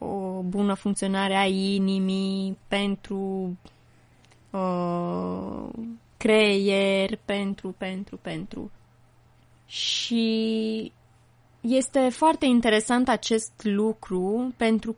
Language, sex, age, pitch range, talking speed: Romanian, female, 20-39, 190-225 Hz, 70 wpm